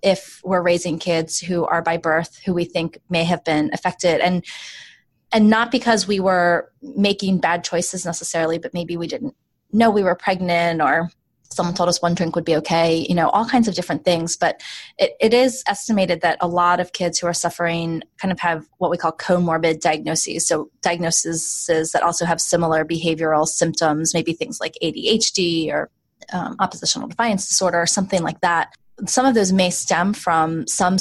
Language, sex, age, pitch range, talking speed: English, female, 20-39, 165-190 Hz, 190 wpm